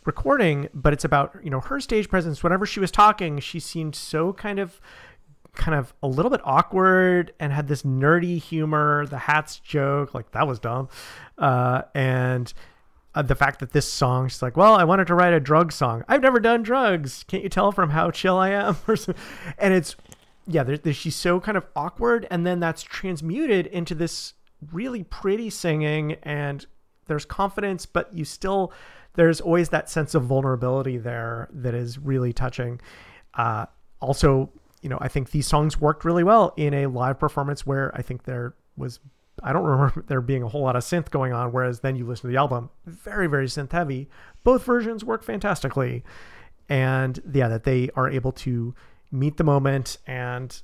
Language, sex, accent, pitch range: English, male, American, 130-175 Hz